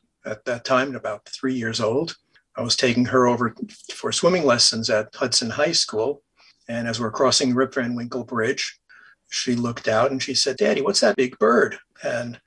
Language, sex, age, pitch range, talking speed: English, male, 50-69, 115-130 Hz, 190 wpm